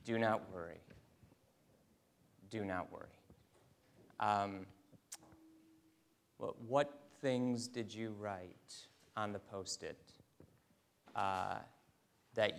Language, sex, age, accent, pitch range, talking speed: English, male, 30-49, American, 100-125 Hz, 85 wpm